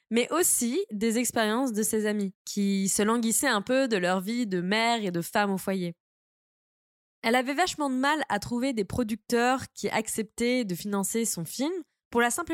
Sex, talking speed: female, 190 wpm